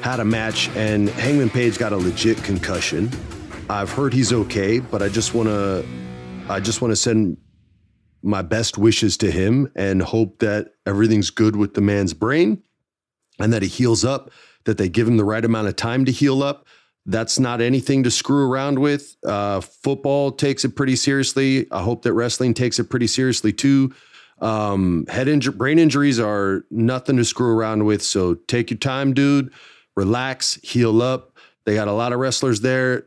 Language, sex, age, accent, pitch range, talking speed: English, male, 30-49, American, 105-130 Hz, 185 wpm